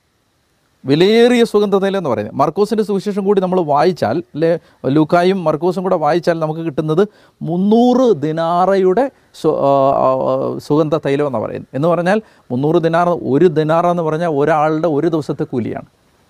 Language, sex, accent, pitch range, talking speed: Malayalam, male, native, 145-200 Hz, 120 wpm